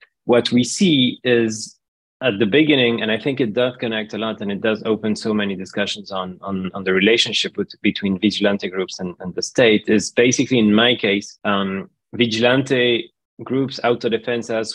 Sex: male